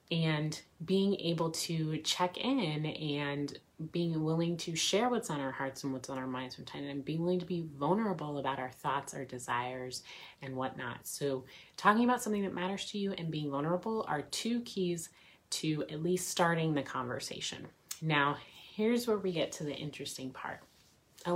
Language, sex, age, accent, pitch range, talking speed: English, female, 30-49, American, 140-180 Hz, 175 wpm